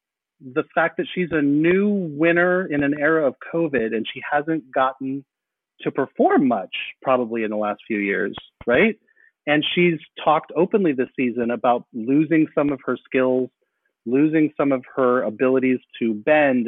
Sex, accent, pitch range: male, American, 125-165 Hz